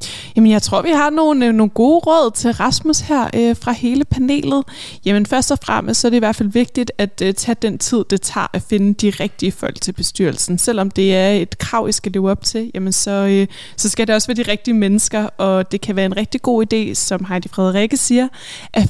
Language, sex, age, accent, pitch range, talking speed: Danish, female, 20-39, native, 195-240 Hz, 240 wpm